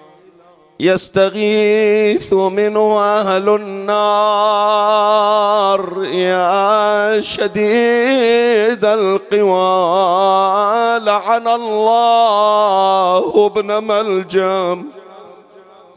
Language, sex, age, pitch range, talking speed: Arabic, male, 50-69, 190-225 Hz, 40 wpm